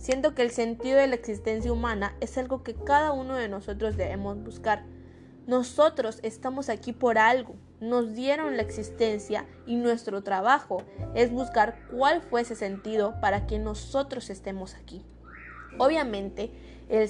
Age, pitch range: 20-39, 205-255 Hz